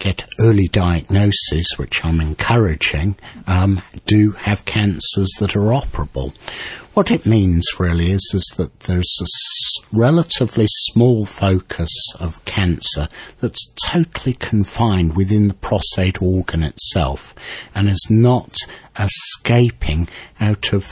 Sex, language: male, English